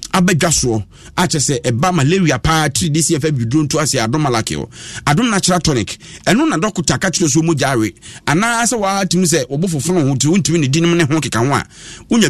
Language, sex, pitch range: English, male, 140-185 Hz